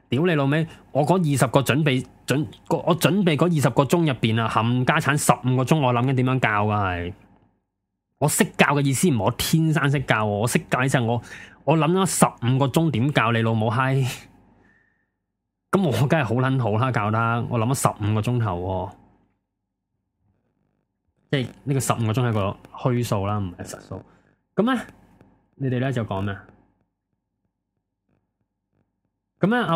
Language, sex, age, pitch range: Chinese, male, 20-39, 100-145 Hz